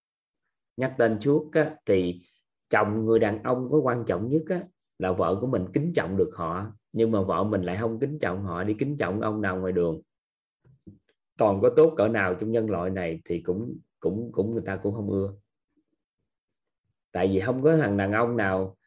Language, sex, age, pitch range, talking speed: Vietnamese, male, 20-39, 100-140 Hz, 205 wpm